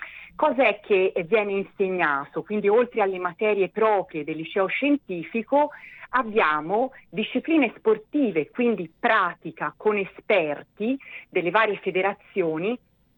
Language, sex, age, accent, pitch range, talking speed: Italian, female, 40-59, native, 165-215 Hz, 105 wpm